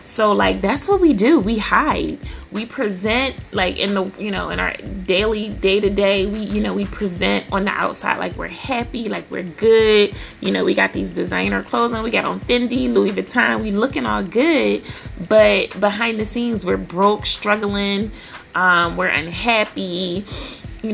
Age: 20-39